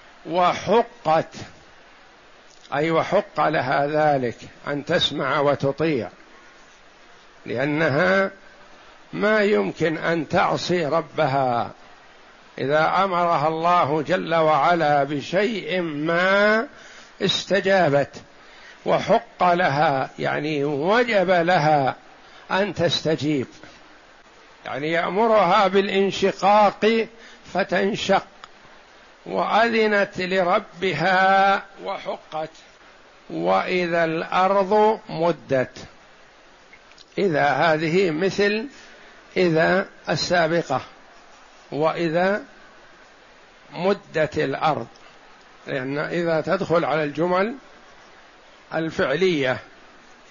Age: 60-79